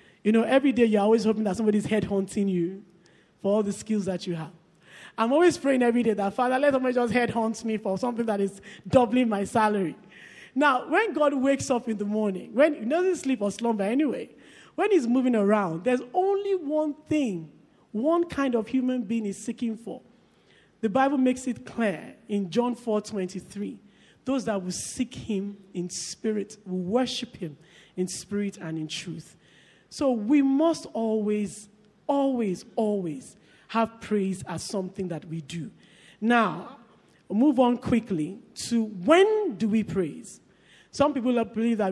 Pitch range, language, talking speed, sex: 200-260 Hz, English, 170 wpm, male